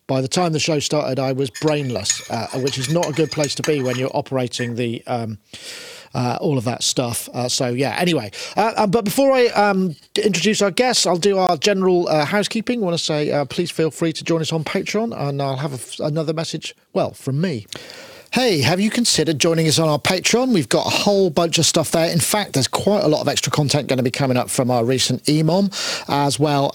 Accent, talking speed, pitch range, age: British, 235 wpm, 140-180 Hz, 40-59